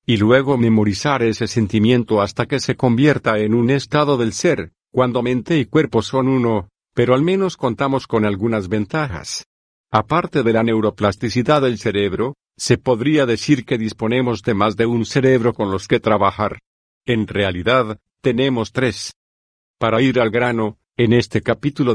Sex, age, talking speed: male, 50-69, 160 wpm